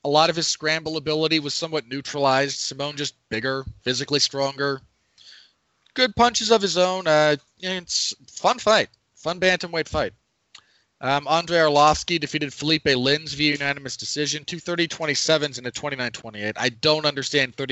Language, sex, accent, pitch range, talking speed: English, male, American, 130-165 Hz, 150 wpm